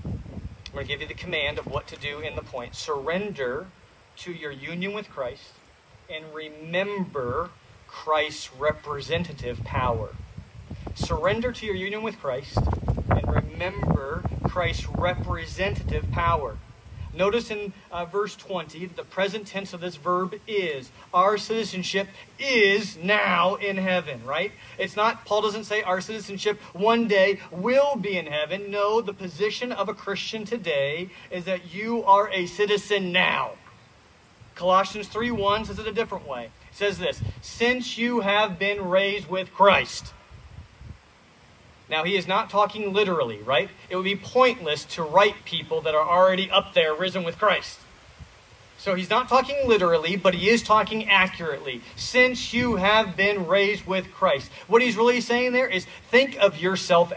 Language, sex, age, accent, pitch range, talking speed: English, male, 40-59, American, 175-215 Hz, 155 wpm